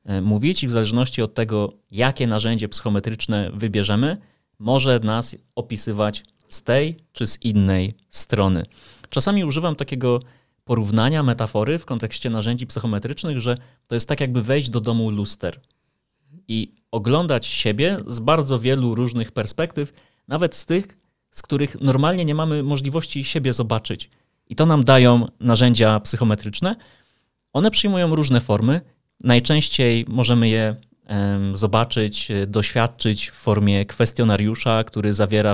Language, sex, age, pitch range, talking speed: Polish, male, 30-49, 105-130 Hz, 125 wpm